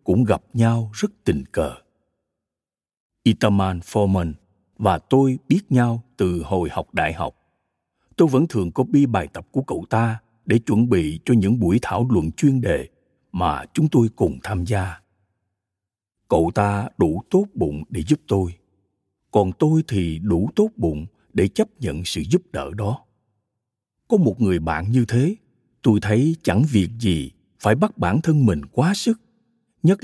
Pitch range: 95-135 Hz